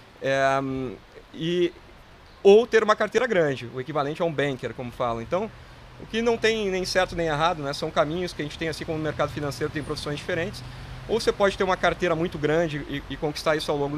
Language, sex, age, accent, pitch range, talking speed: Portuguese, male, 30-49, Brazilian, 145-205 Hz, 225 wpm